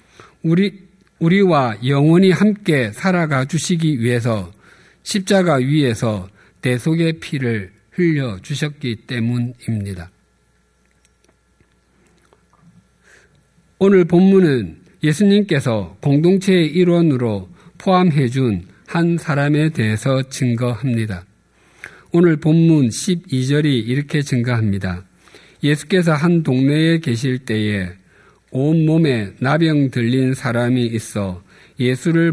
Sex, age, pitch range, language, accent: male, 50-69, 115-165 Hz, Korean, native